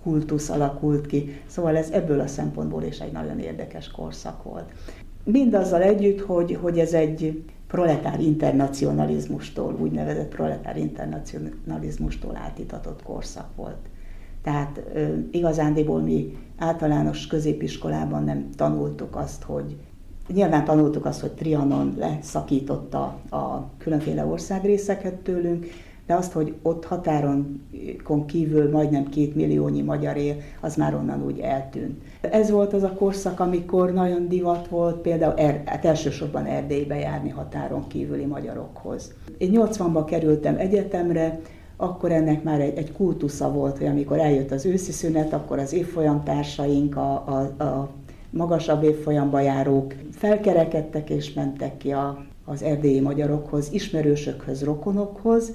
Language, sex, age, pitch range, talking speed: Hungarian, female, 60-79, 130-165 Hz, 130 wpm